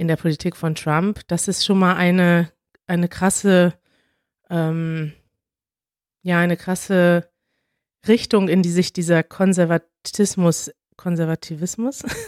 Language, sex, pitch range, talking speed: German, female, 170-210 Hz, 110 wpm